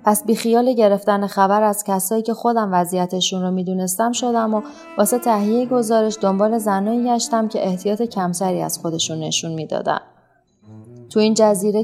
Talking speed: 150 wpm